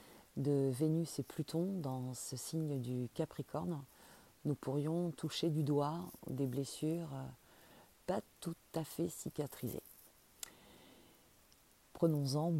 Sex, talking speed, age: female, 105 wpm, 40-59